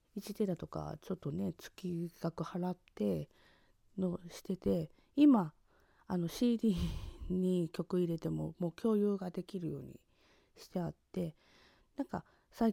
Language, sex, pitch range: Japanese, female, 165-230 Hz